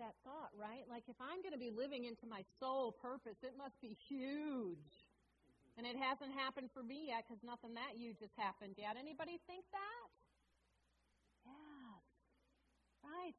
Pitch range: 200-315 Hz